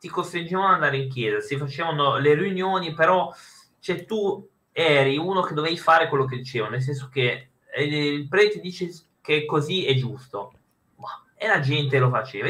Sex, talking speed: male, 180 wpm